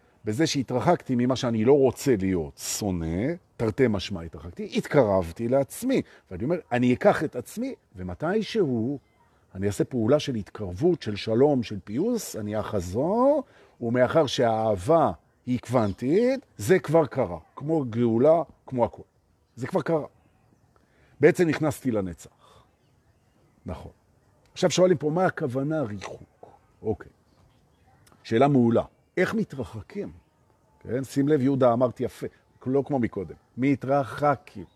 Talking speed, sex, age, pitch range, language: 105 wpm, male, 50-69, 110-155 Hz, Hebrew